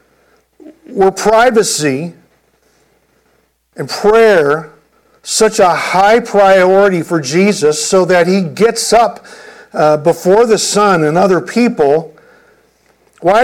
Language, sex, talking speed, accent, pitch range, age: English, male, 100 wpm, American, 170-220 Hz, 50-69